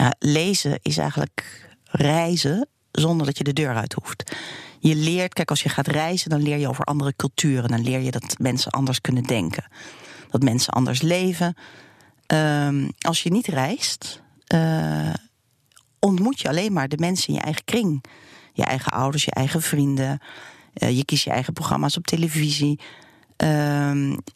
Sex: female